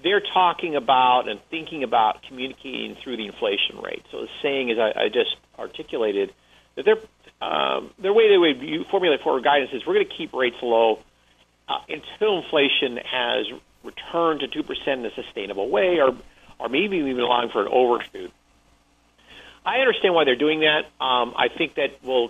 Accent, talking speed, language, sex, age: American, 180 wpm, English, male, 50-69